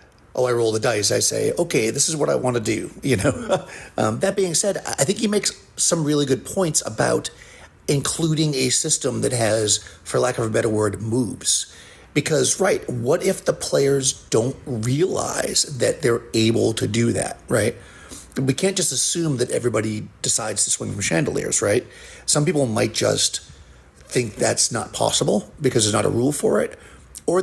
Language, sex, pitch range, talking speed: English, male, 110-145 Hz, 185 wpm